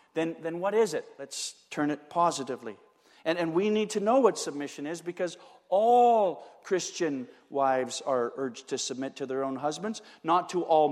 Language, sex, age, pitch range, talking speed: English, male, 50-69, 130-160 Hz, 180 wpm